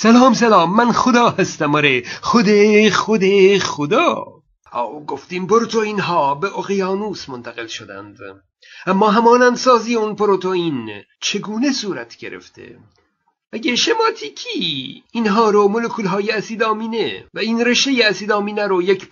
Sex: male